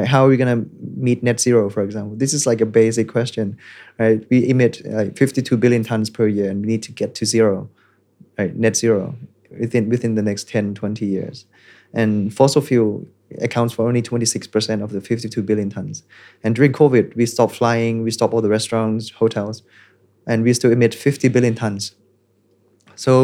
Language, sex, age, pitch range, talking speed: English, male, 20-39, 110-120 Hz, 190 wpm